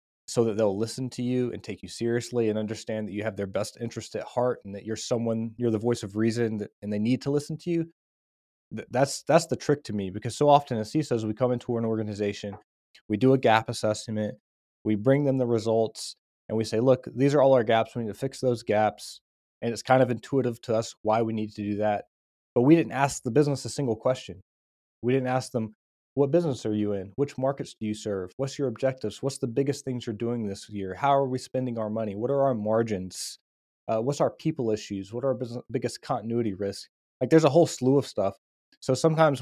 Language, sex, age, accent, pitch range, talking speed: English, male, 20-39, American, 105-130 Hz, 235 wpm